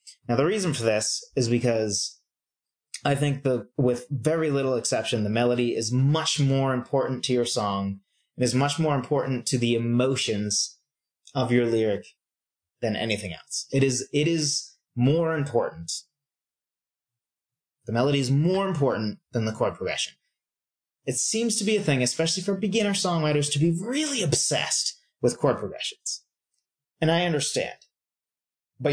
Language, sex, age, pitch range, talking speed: English, male, 30-49, 120-150 Hz, 150 wpm